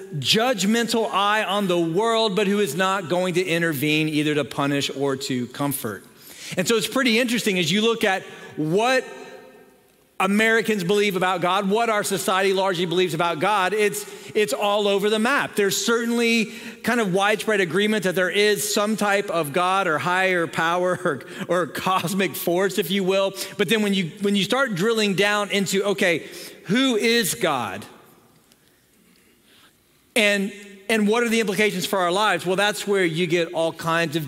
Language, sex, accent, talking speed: English, male, American, 175 wpm